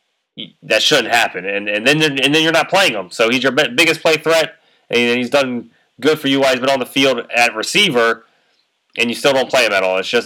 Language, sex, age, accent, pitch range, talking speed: English, male, 20-39, American, 100-125 Hz, 245 wpm